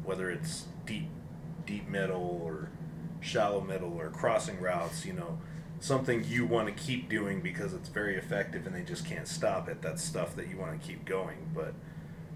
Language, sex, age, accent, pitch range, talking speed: English, male, 30-49, American, 150-165 Hz, 185 wpm